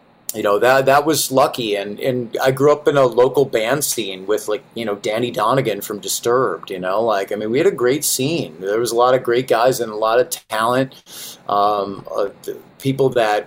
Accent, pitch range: American, 105-140 Hz